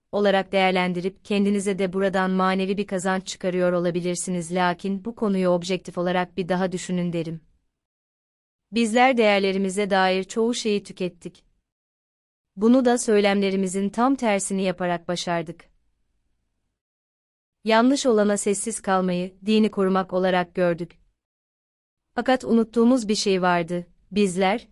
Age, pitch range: 30-49, 180-215 Hz